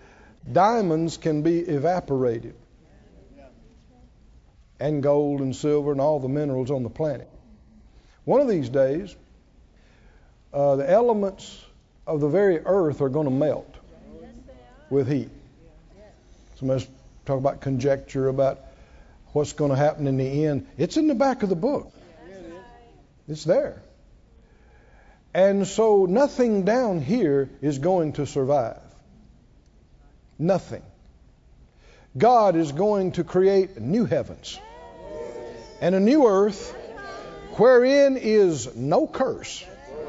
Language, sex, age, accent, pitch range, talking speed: English, male, 60-79, American, 135-215 Hz, 120 wpm